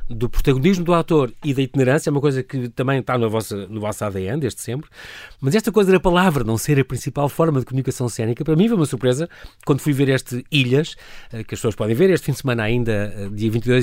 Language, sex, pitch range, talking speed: Portuguese, male, 130-190 Hz, 240 wpm